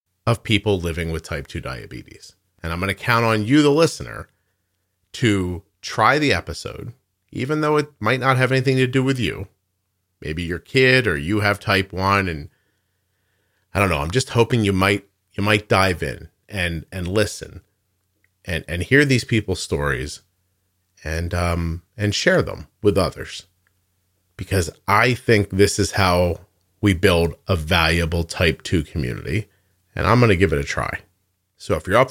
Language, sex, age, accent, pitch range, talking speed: English, male, 40-59, American, 90-115 Hz, 175 wpm